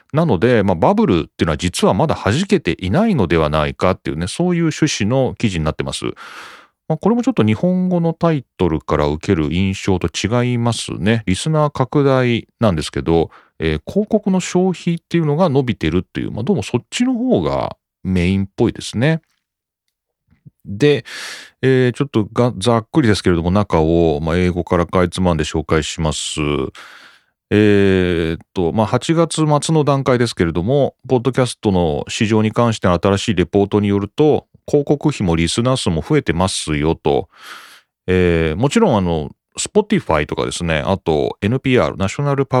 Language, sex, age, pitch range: Japanese, male, 40-59, 85-140 Hz